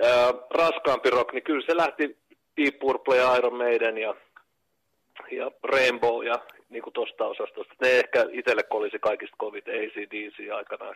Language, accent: Finnish, native